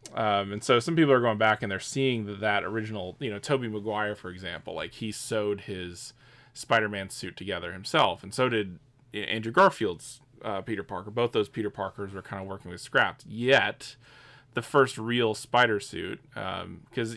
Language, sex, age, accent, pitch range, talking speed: English, male, 20-39, American, 95-125 Hz, 190 wpm